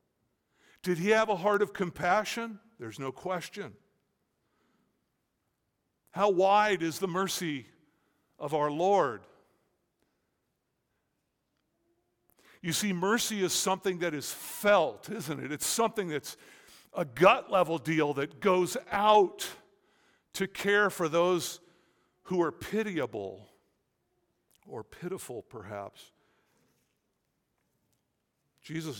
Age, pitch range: 50-69, 135-185 Hz